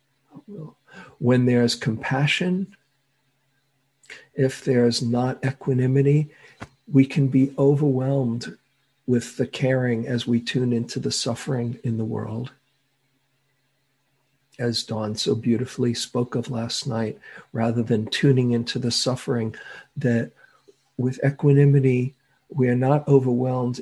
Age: 50-69